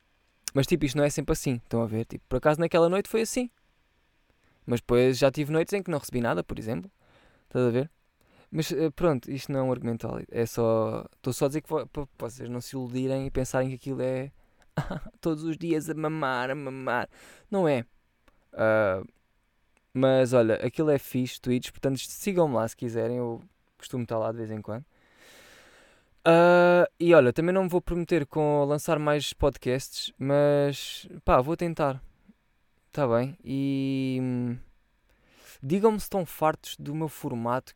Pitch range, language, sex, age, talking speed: 120-160 Hz, Portuguese, male, 20-39, 180 wpm